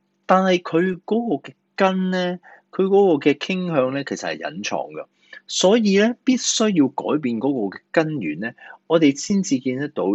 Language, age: Chinese, 30-49